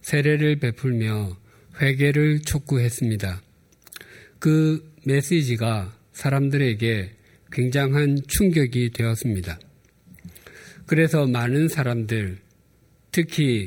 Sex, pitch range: male, 115-145 Hz